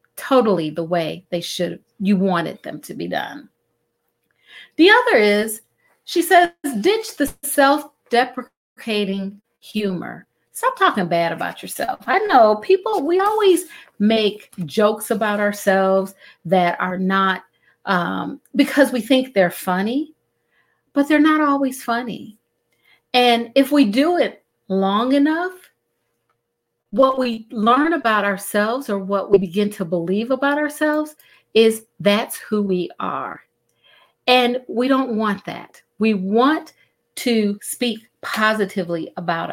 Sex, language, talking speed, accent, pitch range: female, English, 130 wpm, American, 200-280 Hz